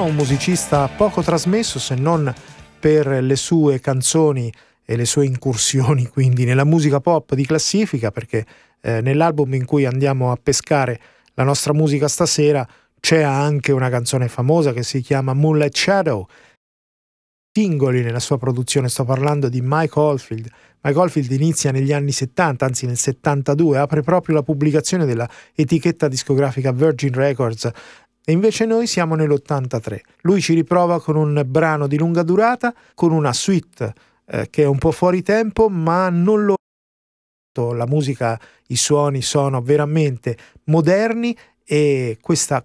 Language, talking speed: Italian, 150 wpm